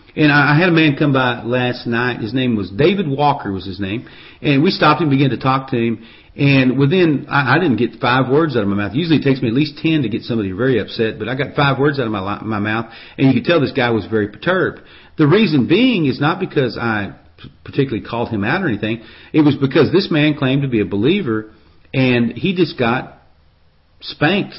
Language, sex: English, male